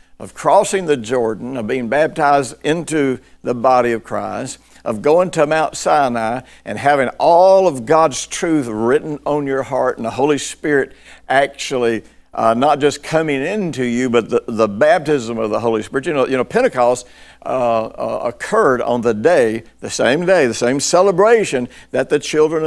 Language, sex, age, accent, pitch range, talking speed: English, male, 60-79, American, 120-155 Hz, 175 wpm